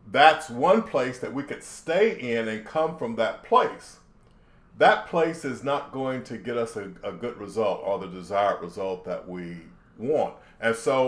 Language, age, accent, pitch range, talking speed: English, 40-59, American, 115-155 Hz, 185 wpm